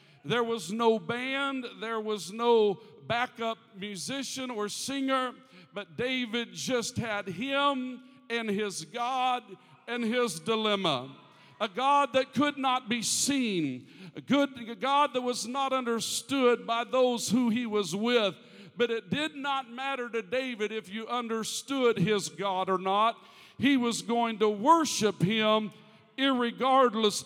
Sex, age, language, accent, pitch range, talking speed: male, 50-69, English, American, 190-240 Hz, 140 wpm